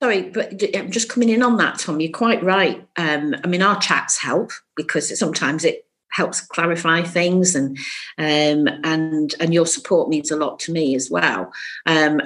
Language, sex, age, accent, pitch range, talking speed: English, female, 50-69, British, 155-215 Hz, 185 wpm